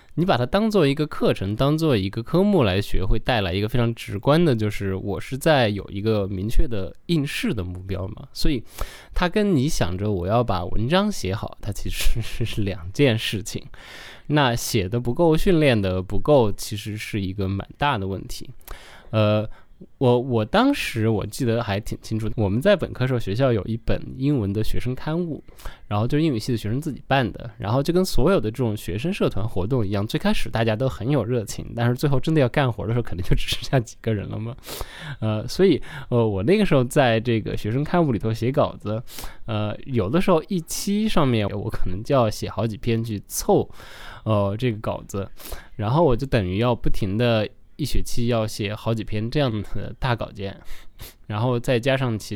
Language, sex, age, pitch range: Chinese, male, 20-39, 105-135 Hz